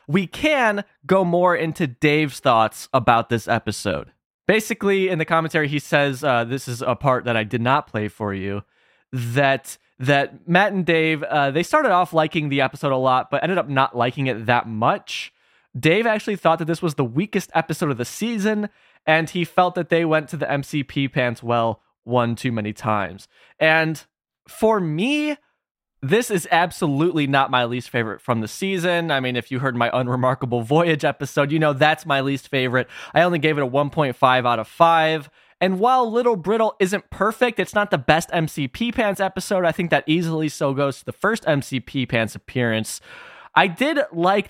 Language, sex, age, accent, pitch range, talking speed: English, male, 20-39, American, 130-180 Hz, 190 wpm